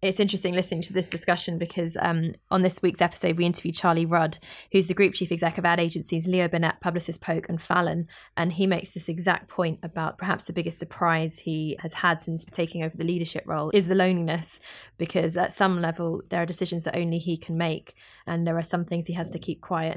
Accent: British